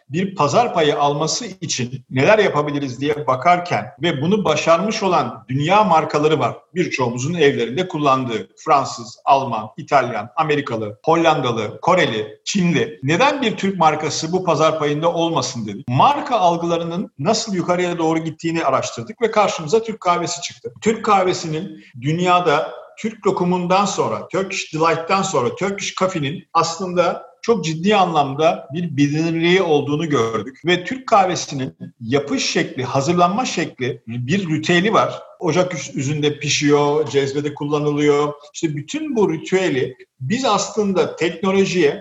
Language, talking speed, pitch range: Turkish, 125 wpm, 145-195 Hz